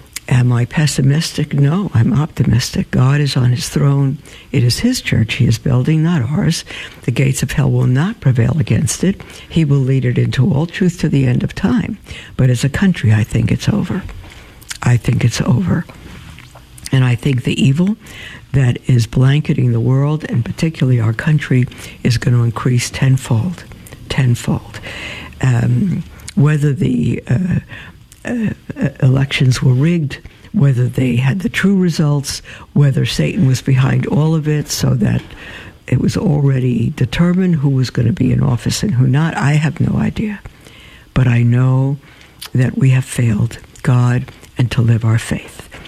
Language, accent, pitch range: English, American, 120-145 Hz